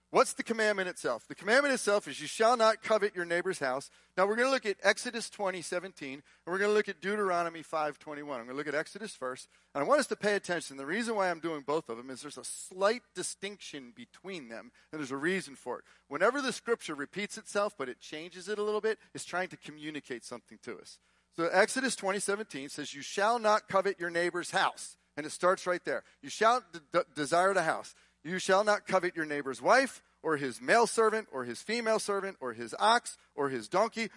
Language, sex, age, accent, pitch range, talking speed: English, male, 40-59, American, 150-210 Hz, 230 wpm